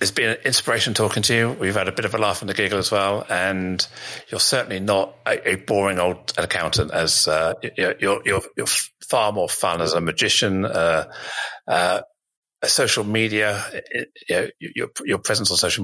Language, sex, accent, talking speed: English, male, British, 180 wpm